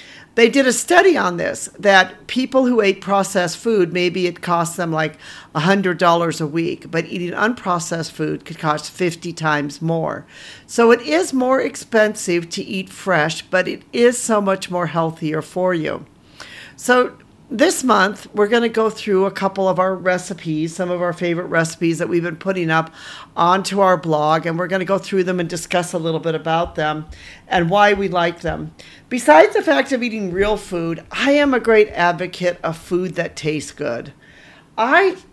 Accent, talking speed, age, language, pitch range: American, 185 wpm, 50-69, English, 175-245 Hz